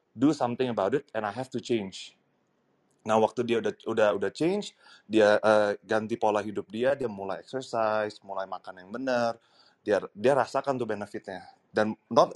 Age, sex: 30-49, male